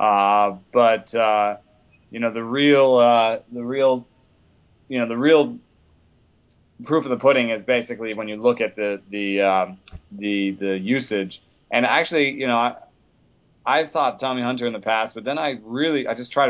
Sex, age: male, 30-49